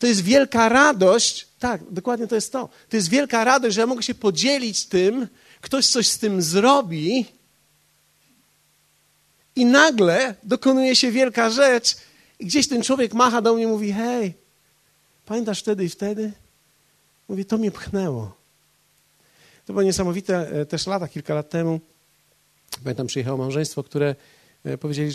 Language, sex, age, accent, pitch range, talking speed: Polish, male, 40-59, native, 140-220 Hz, 145 wpm